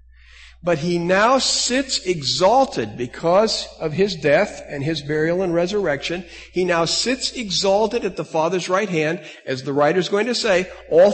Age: 60-79